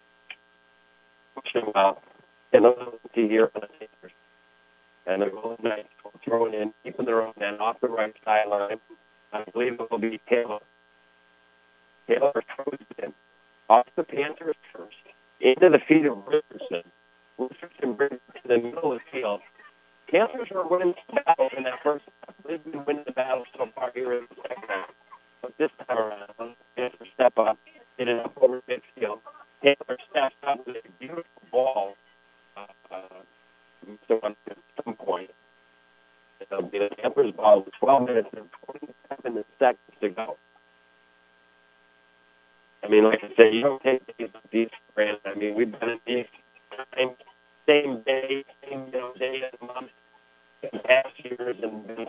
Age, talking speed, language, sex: 40-59, 150 wpm, English, male